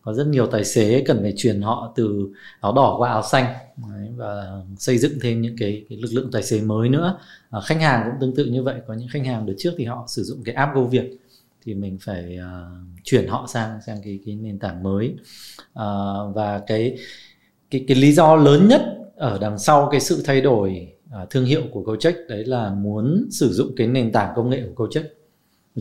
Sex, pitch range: male, 110-140 Hz